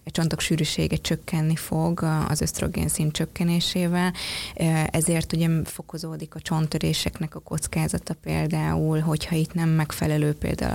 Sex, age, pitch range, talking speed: female, 20-39, 155-165 Hz, 125 wpm